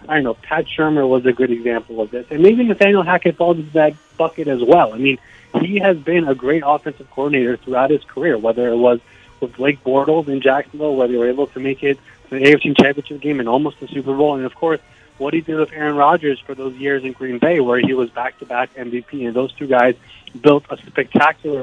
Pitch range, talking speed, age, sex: 130-155 Hz, 235 wpm, 30-49, male